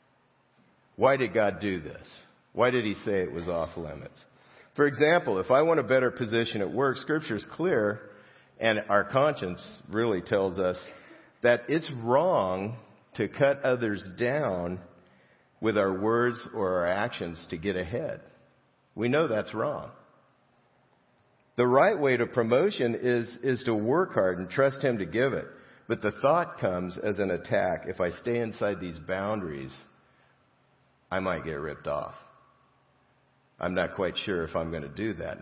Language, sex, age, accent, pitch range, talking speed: English, male, 50-69, American, 95-130 Hz, 165 wpm